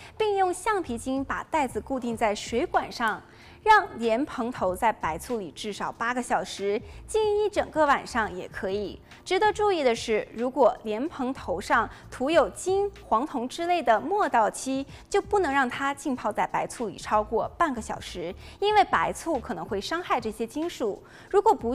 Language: Chinese